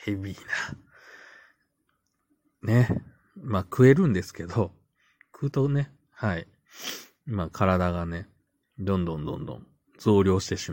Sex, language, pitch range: male, Japanese, 90-110 Hz